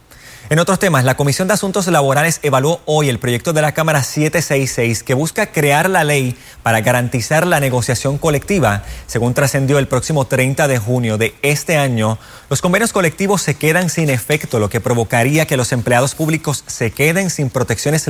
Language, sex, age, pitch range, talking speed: Spanish, male, 30-49, 120-155 Hz, 180 wpm